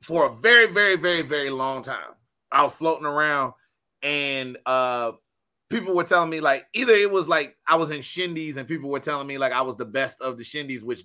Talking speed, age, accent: 225 wpm, 30-49, American